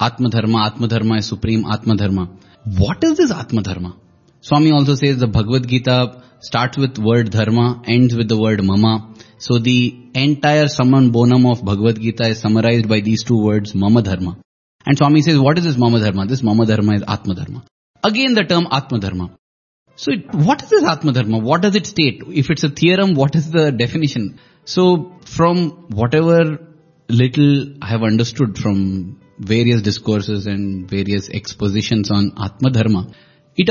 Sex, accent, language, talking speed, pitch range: male, Indian, English, 175 wpm, 110-160 Hz